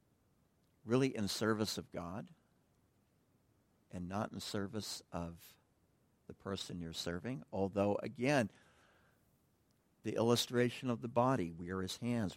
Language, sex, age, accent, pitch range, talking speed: English, male, 60-79, American, 105-135 Hz, 115 wpm